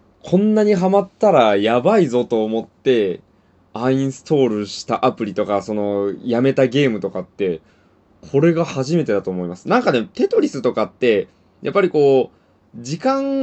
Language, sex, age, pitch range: Japanese, male, 20-39, 105-170 Hz